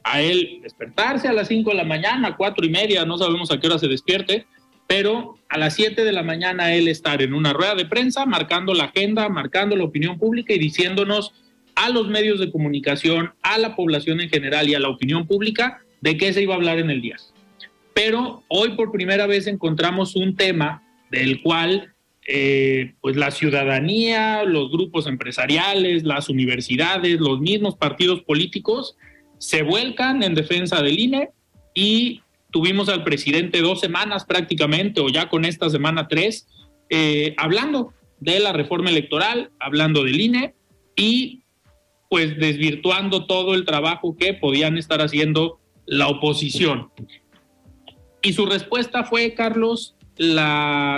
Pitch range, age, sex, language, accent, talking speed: 150-210 Hz, 40-59, male, Spanish, Mexican, 160 wpm